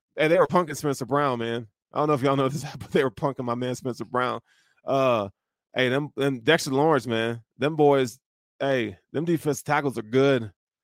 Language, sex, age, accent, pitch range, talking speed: English, male, 20-39, American, 120-145 Hz, 205 wpm